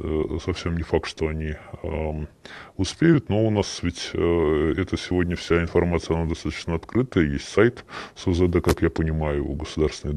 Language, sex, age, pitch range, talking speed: Russian, female, 20-39, 80-95 Hz, 160 wpm